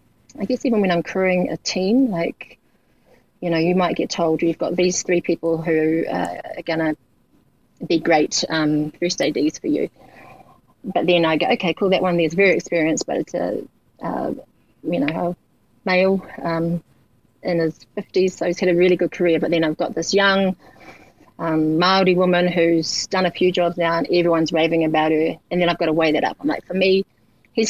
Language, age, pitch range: English, 30-49, 160-185 Hz